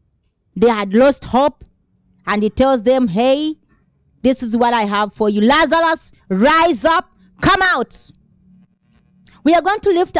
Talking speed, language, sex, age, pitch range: 155 wpm, English, female, 30-49, 210-285 Hz